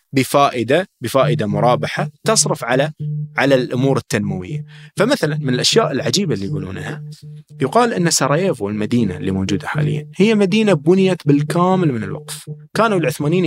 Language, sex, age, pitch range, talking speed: Arabic, male, 30-49, 135-175 Hz, 130 wpm